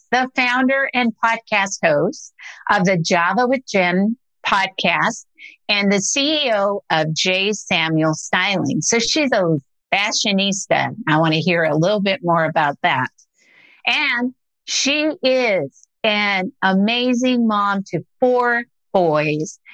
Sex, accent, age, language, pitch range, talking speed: female, American, 50-69, English, 165-240 Hz, 125 wpm